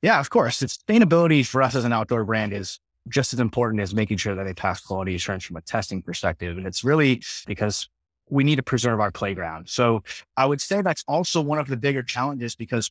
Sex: male